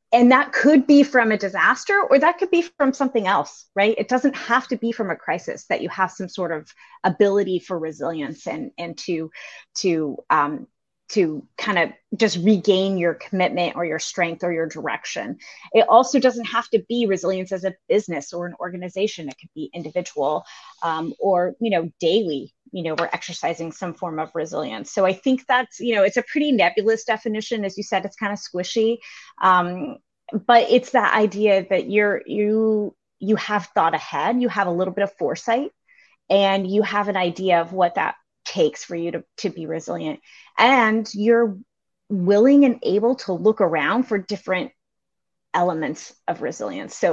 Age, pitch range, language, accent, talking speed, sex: 30-49, 180-235 Hz, English, American, 185 wpm, female